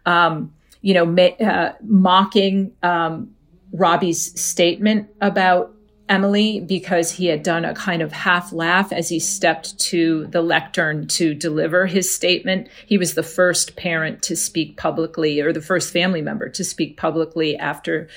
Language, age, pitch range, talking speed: English, 40-59, 165-200 Hz, 150 wpm